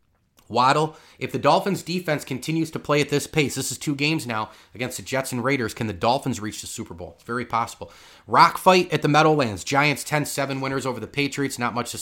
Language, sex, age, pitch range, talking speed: English, male, 30-49, 125-150 Hz, 230 wpm